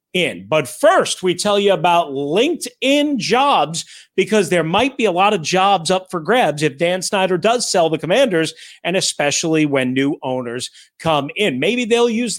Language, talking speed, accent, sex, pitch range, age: English, 175 wpm, American, male, 170-255 Hz, 40-59